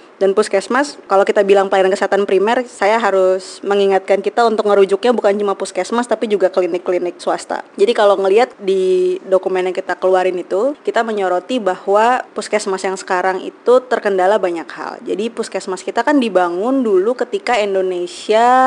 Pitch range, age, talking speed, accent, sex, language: 180-220 Hz, 20-39, 155 wpm, native, female, Indonesian